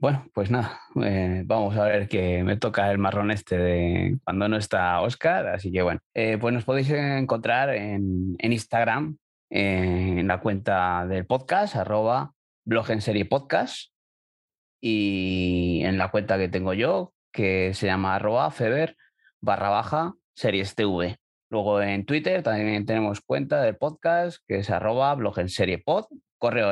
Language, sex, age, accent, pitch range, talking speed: Spanish, male, 30-49, Spanish, 95-115 Hz, 160 wpm